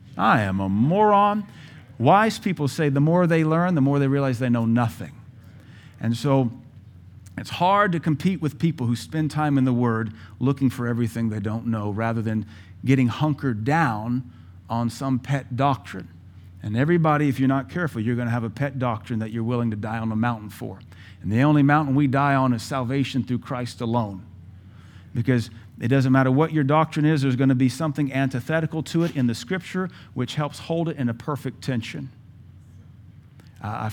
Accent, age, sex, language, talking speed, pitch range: American, 50-69, male, English, 195 wpm, 110-140 Hz